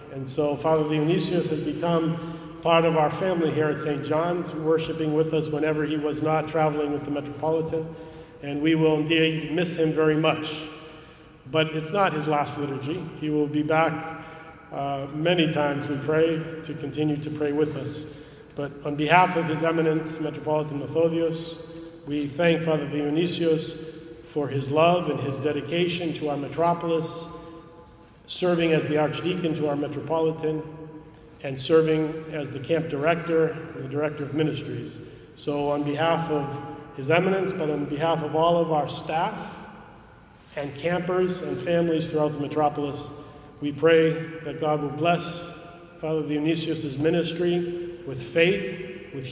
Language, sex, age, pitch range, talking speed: English, male, 40-59, 150-165 Hz, 155 wpm